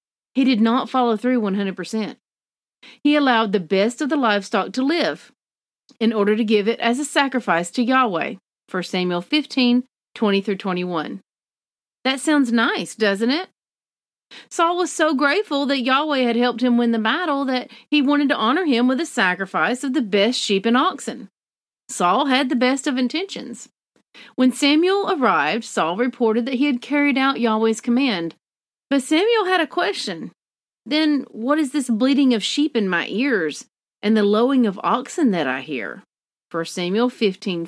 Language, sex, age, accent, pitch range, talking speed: English, female, 40-59, American, 215-280 Hz, 165 wpm